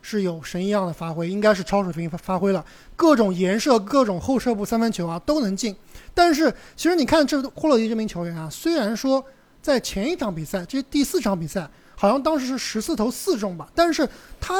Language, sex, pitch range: Chinese, male, 185-275 Hz